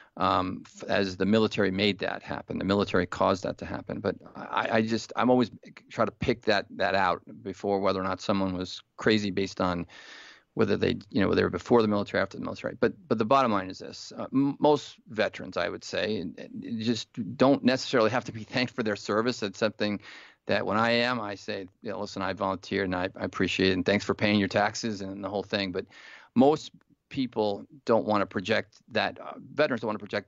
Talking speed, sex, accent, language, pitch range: 230 wpm, male, American, English, 95-110 Hz